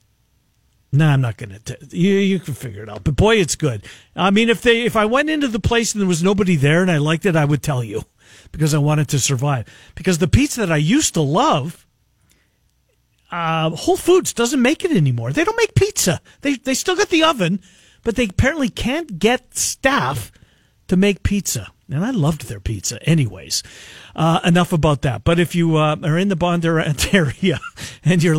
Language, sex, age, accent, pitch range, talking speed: English, male, 50-69, American, 135-205 Hz, 210 wpm